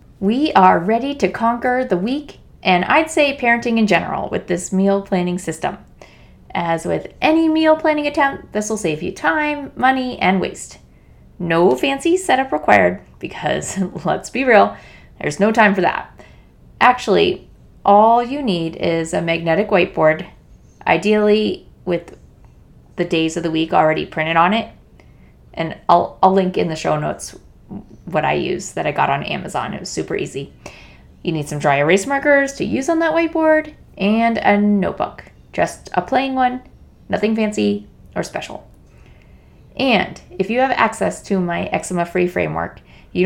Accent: American